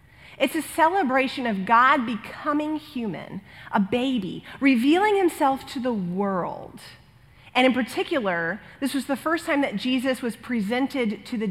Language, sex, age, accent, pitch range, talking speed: English, female, 30-49, American, 210-275 Hz, 145 wpm